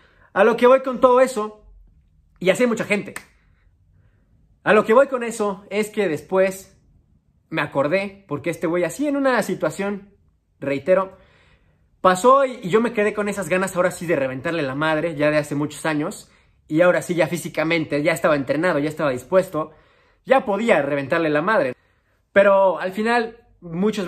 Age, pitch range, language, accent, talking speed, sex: 30-49, 140-195 Hz, English, Mexican, 175 wpm, male